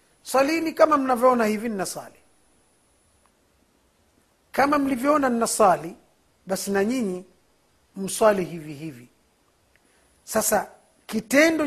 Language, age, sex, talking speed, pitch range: Swahili, 50-69, male, 80 wpm, 200-255 Hz